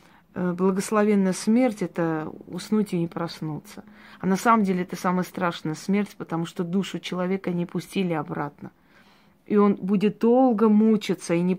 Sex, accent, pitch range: female, native, 175-205 Hz